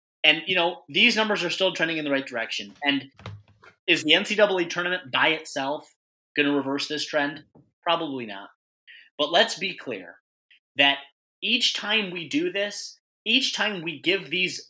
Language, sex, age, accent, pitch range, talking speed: English, male, 30-49, American, 135-185 Hz, 165 wpm